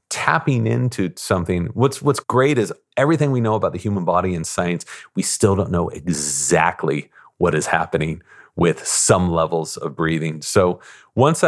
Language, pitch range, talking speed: English, 90-120 Hz, 175 wpm